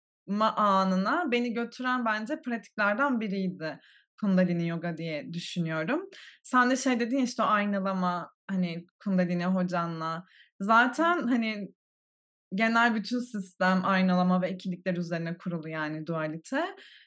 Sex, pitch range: female, 190-240 Hz